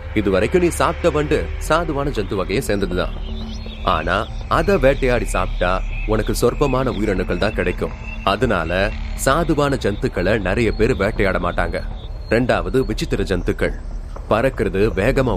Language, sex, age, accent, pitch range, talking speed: Tamil, male, 30-49, native, 95-145 Hz, 75 wpm